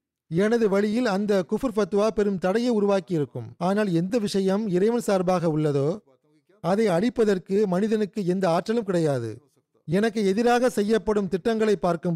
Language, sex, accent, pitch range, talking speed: Tamil, male, native, 170-215 Hz, 130 wpm